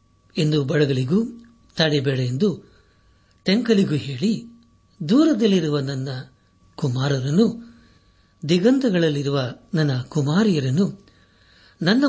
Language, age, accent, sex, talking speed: Kannada, 60-79, native, male, 65 wpm